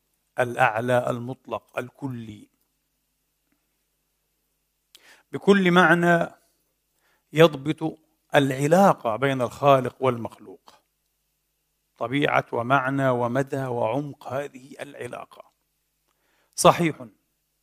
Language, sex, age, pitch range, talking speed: Arabic, male, 50-69, 130-145 Hz, 60 wpm